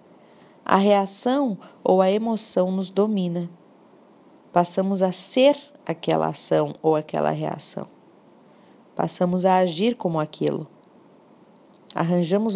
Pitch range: 170-230 Hz